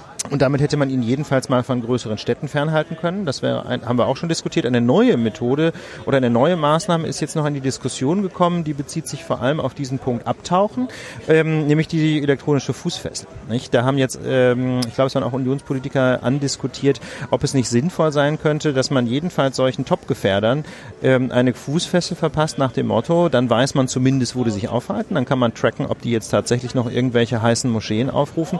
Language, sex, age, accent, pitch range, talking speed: German, male, 40-59, German, 125-155 Hz, 205 wpm